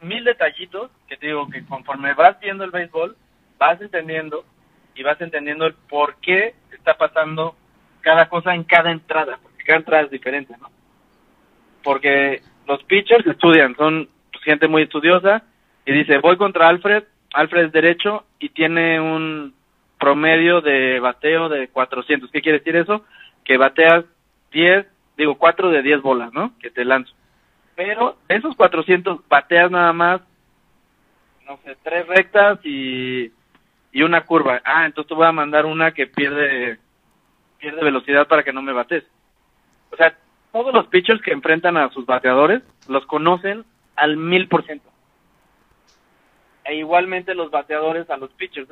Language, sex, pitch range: Spanish, male, 145-175 Hz